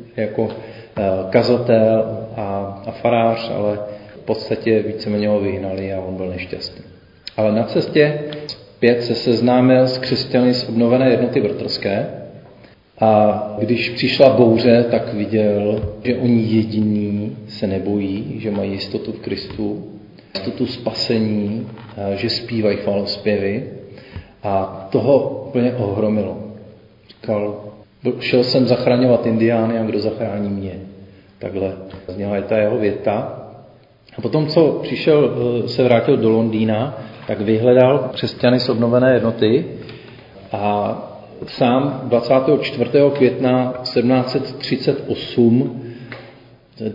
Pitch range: 105-125 Hz